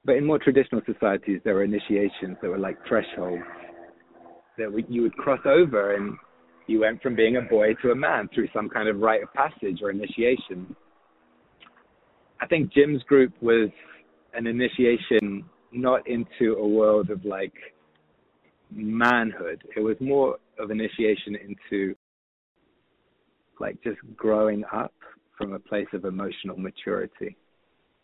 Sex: male